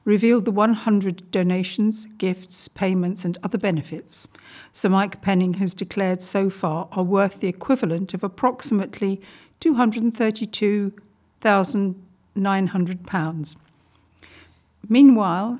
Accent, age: British, 50-69